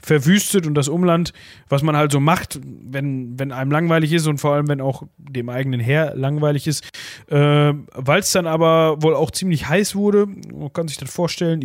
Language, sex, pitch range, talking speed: German, male, 130-160 Hz, 200 wpm